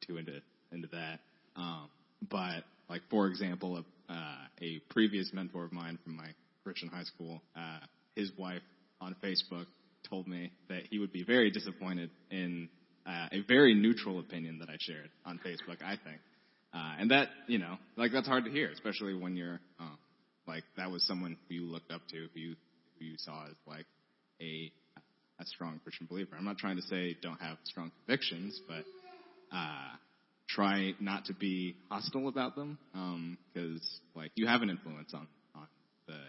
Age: 20-39